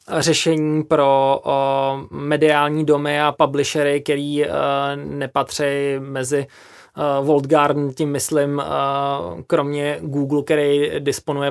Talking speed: 85 wpm